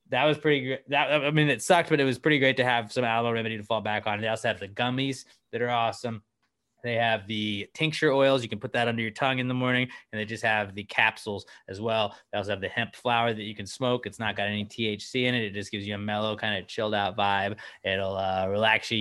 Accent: American